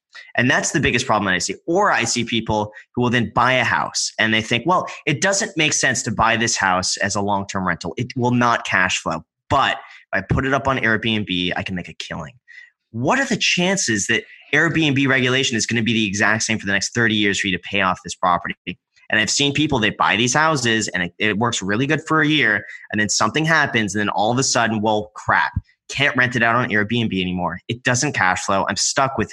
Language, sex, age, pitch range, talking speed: English, male, 20-39, 105-135 Hz, 250 wpm